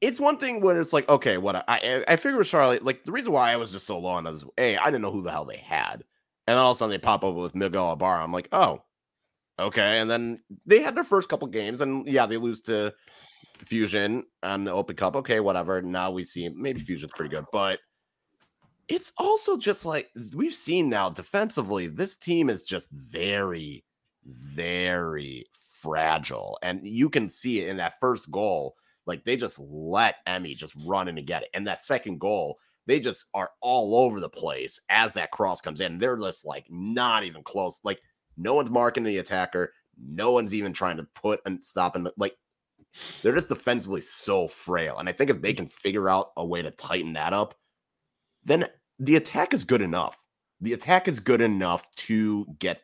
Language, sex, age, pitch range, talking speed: English, male, 30-49, 90-145 Hz, 210 wpm